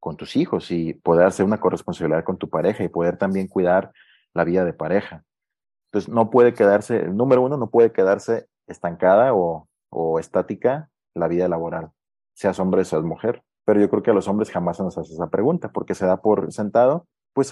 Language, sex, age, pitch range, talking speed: Spanish, male, 30-49, 95-135 Hz, 210 wpm